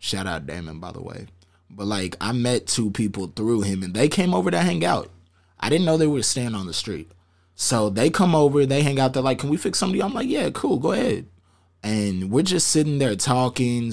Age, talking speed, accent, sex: 20-39, 240 wpm, American, male